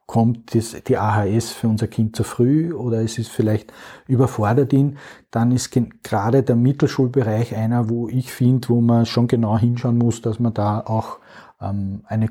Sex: male